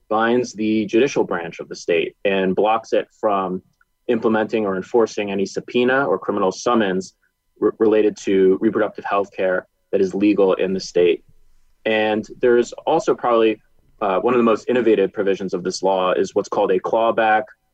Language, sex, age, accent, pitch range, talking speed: English, male, 20-39, American, 95-110 Hz, 165 wpm